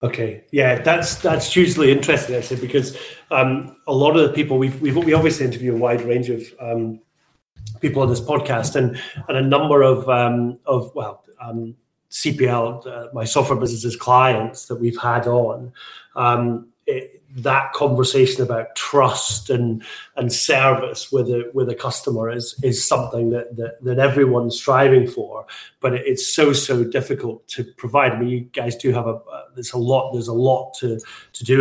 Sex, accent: male, British